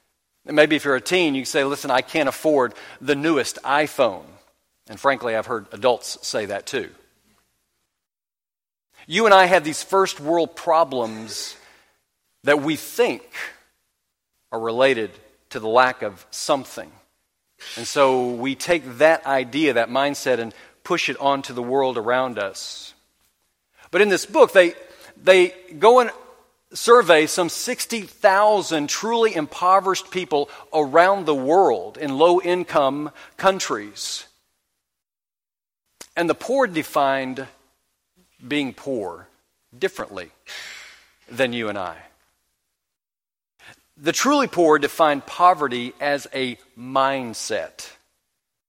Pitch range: 130-180 Hz